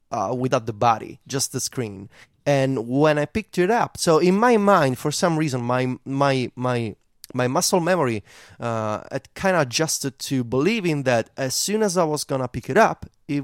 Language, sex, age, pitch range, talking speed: English, male, 30-49, 120-165 Hz, 190 wpm